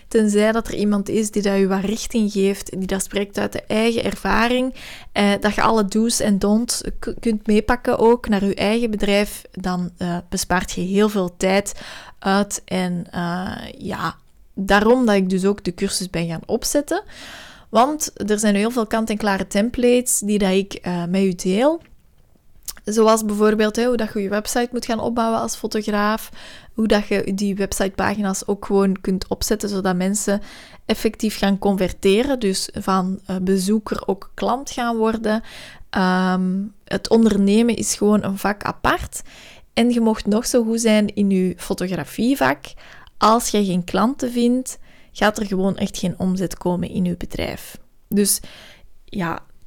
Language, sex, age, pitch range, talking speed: Dutch, female, 20-39, 195-225 Hz, 165 wpm